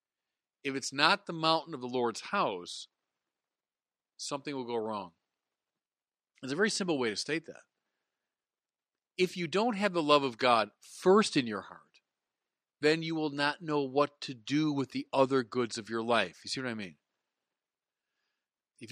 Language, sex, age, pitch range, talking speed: English, male, 40-59, 115-155 Hz, 170 wpm